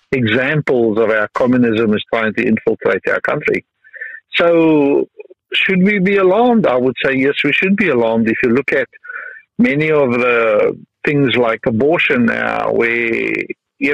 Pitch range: 115-190 Hz